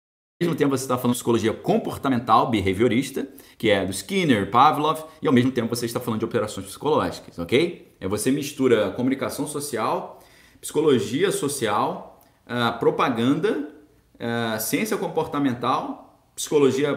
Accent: Brazilian